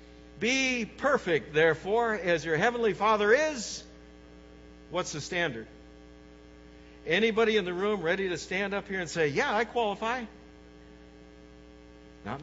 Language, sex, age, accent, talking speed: English, male, 60-79, American, 125 wpm